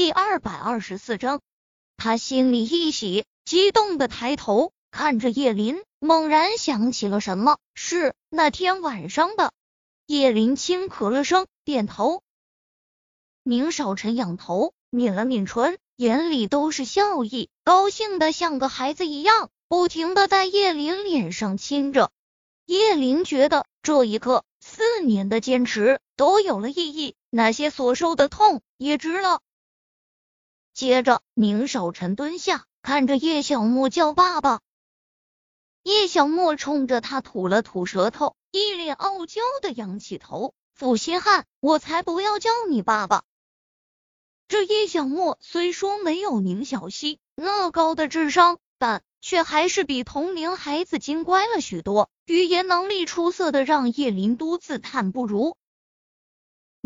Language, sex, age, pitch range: Chinese, female, 20-39, 240-350 Hz